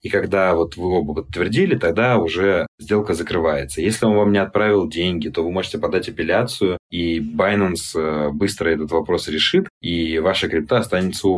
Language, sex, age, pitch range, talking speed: Russian, male, 20-39, 90-115 Hz, 165 wpm